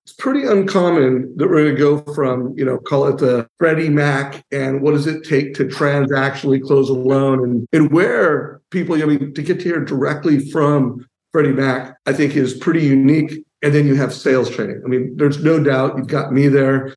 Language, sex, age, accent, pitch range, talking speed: English, male, 50-69, American, 135-155 Hz, 210 wpm